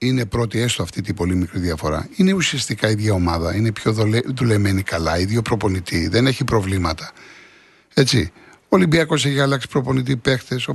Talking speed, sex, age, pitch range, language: 165 wpm, male, 60-79, 115-185 Hz, Greek